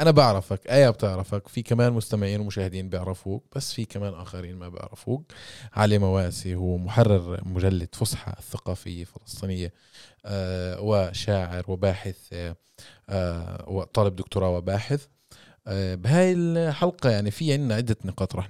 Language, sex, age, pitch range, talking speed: Arabic, male, 20-39, 95-125 Hz, 125 wpm